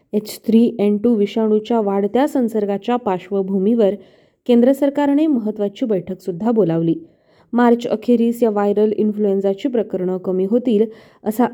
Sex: female